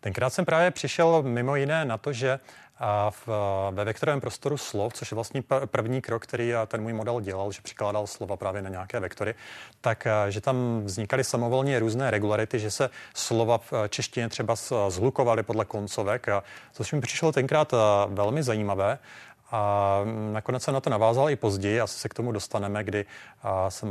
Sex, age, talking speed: male, 30-49, 170 wpm